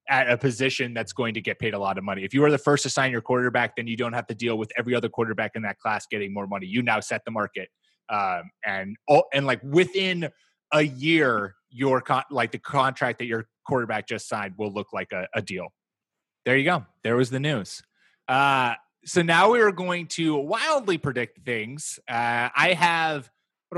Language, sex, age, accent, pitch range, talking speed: English, male, 20-39, American, 125-165 Hz, 215 wpm